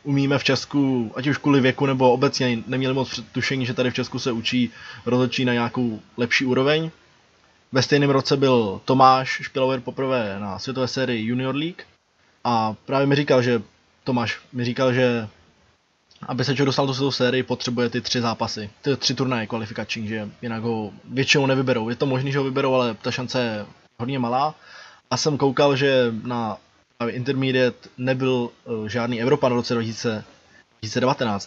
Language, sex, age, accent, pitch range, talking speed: Czech, male, 20-39, native, 120-135 Hz, 170 wpm